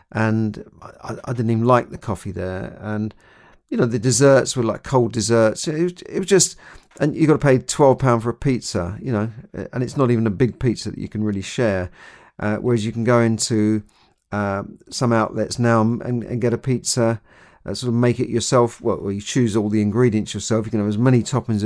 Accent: British